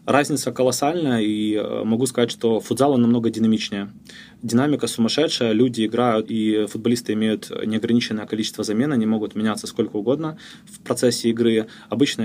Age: 20-39